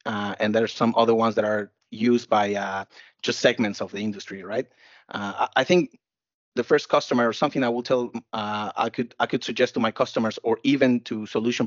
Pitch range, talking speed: 105-130 Hz, 215 wpm